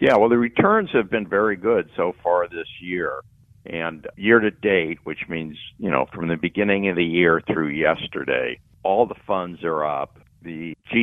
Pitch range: 80-105 Hz